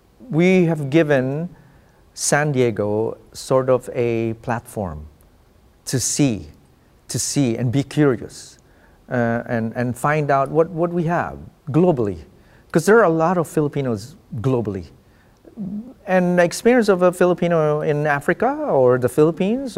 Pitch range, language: 115-170 Hz, English